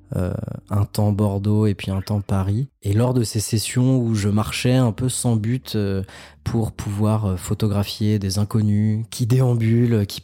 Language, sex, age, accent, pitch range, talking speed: French, male, 20-39, French, 95-110 Hz, 180 wpm